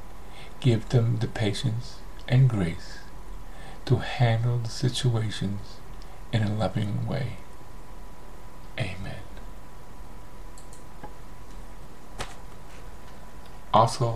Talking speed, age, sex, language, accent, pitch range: 70 wpm, 50-69, male, English, American, 105-125 Hz